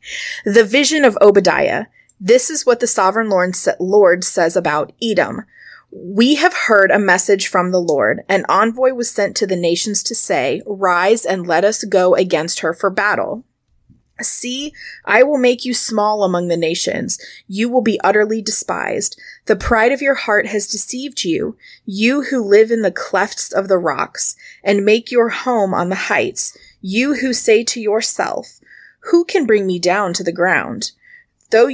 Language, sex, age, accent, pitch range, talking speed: English, female, 20-39, American, 185-240 Hz, 175 wpm